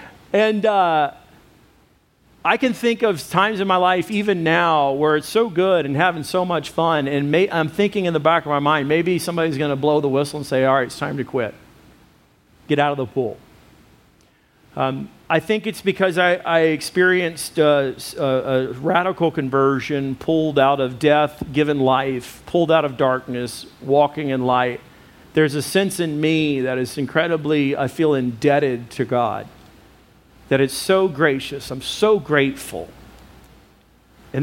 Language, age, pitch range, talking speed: English, 40-59, 135-170 Hz, 165 wpm